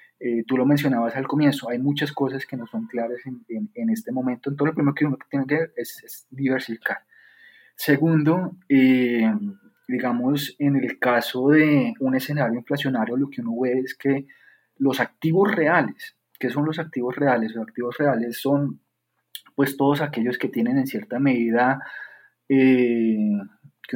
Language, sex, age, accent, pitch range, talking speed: Spanish, male, 20-39, Colombian, 125-150 Hz, 170 wpm